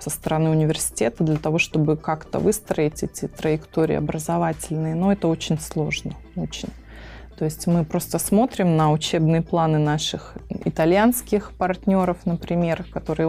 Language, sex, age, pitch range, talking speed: Russian, female, 20-39, 155-180 Hz, 130 wpm